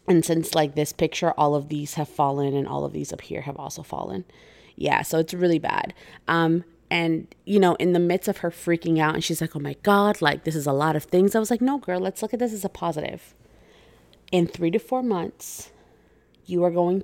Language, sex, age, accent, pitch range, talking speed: English, female, 20-39, American, 165-200 Hz, 240 wpm